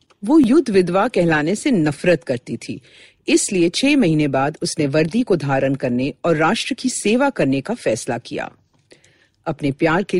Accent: native